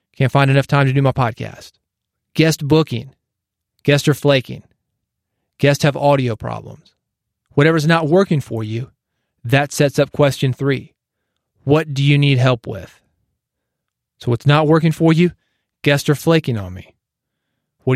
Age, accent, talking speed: 30-49, American, 150 wpm